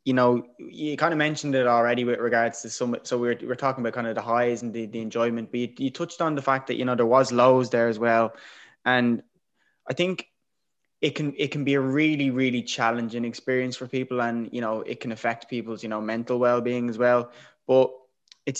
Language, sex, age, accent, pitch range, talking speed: English, male, 20-39, Irish, 115-135 Hz, 230 wpm